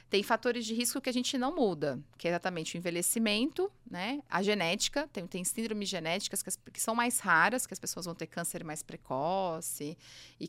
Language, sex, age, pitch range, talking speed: Portuguese, female, 30-49, 160-220 Hz, 200 wpm